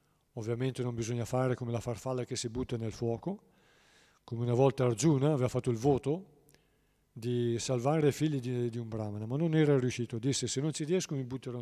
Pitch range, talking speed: 115-135 Hz, 195 wpm